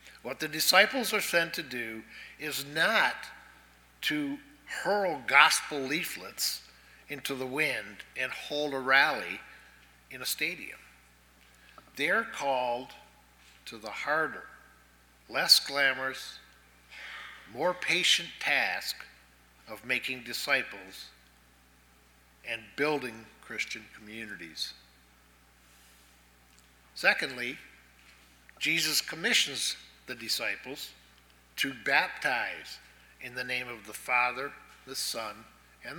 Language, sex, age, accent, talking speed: Russian, male, 60-79, American, 95 wpm